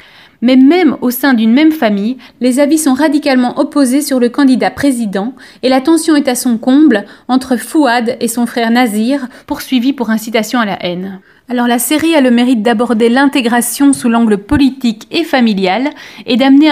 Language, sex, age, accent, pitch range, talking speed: French, female, 30-49, French, 220-275 Hz, 180 wpm